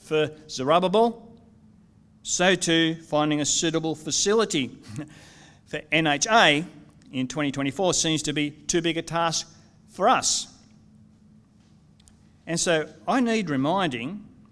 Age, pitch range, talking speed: 50-69, 125-165 Hz, 110 wpm